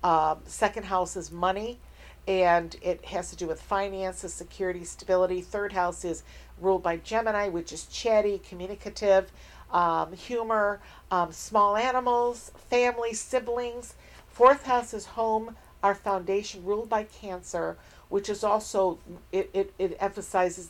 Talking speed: 135 wpm